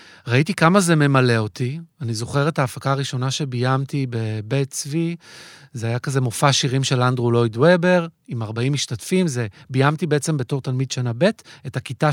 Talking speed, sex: 170 wpm, male